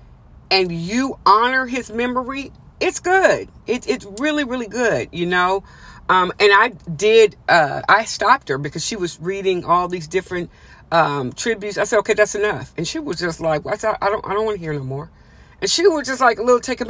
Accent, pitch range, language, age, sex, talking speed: American, 175-230 Hz, English, 40-59, female, 215 wpm